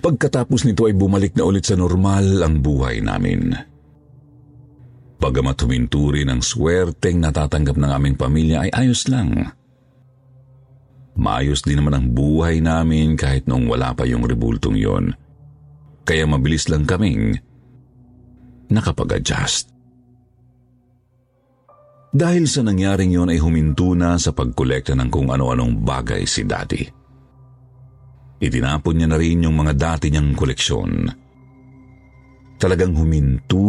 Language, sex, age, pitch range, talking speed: Filipino, male, 50-69, 75-125 Hz, 120 wpm